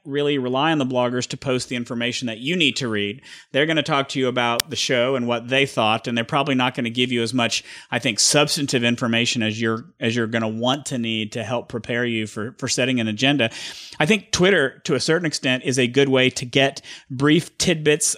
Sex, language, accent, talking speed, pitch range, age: male, English, American, 245 wpm, 120-145 Hz, 40-59